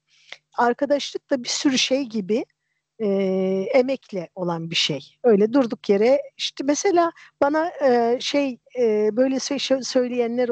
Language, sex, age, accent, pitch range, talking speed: Turkish, female, 50-69, native, 185-250 Hz, 130 wpm